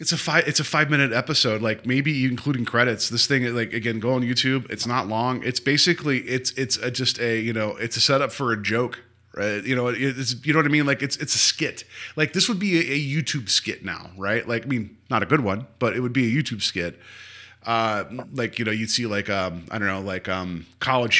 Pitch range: 110-135 Hz